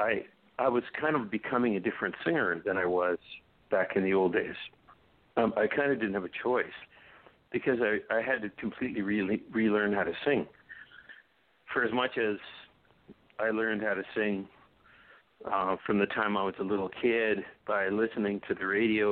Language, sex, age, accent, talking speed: English, male, 60-79, American, 185 wpm